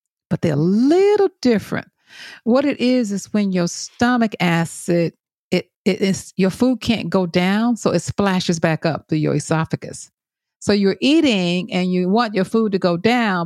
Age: 50-69